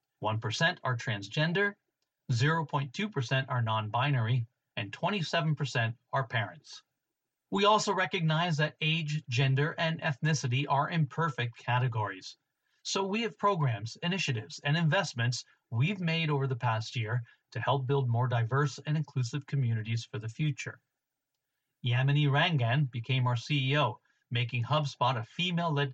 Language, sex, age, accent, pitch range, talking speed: English, male, 40-59, American, 125-155 Hz, 125 wpm